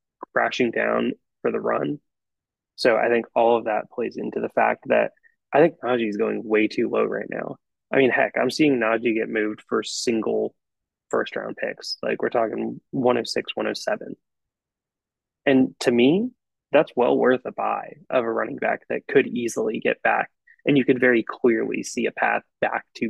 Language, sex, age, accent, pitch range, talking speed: English, male, 20-39, American, 115-155 Hz, 185 wpm